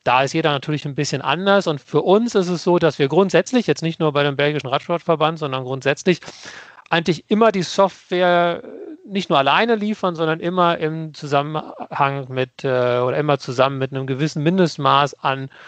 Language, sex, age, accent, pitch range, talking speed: German, male, 40-59, German, 135-160 Hz, 175 wpm